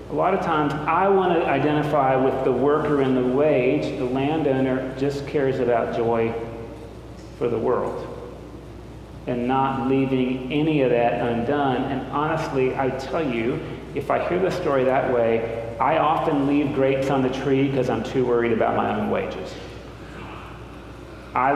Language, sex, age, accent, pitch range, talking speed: English, male, 40-59, American, 125-155 Hz, 160 wpm